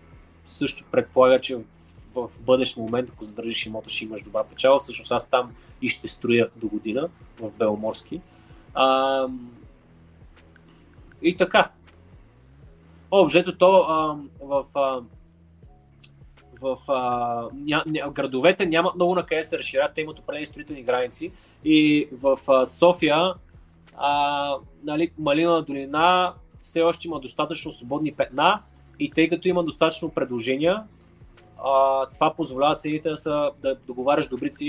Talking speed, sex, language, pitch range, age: 135 wpm, male, Bulgarian, 120-150 Hz, 20-39